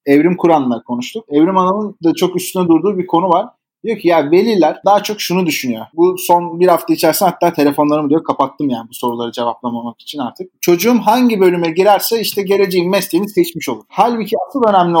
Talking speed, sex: 190 wpm, male